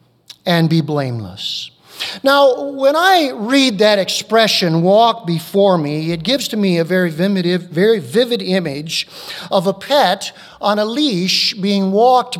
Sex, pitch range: male, 170-240 Hz